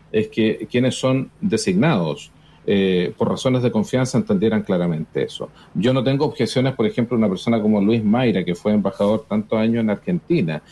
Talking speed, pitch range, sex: 175 wpm, 100-125 Hz, male